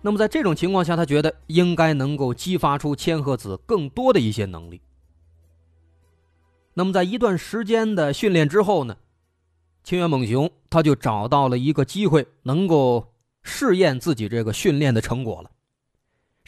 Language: Chinese